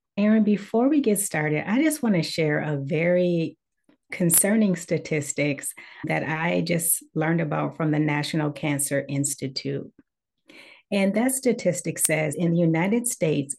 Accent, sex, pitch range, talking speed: American, female, 150-190 Hz, 140 wpm